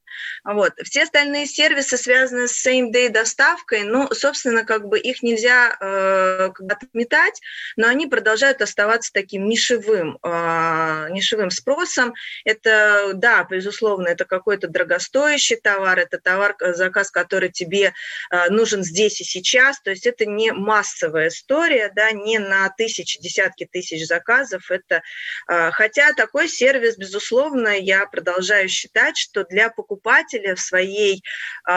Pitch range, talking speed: 185-240 Hz, 130 wpm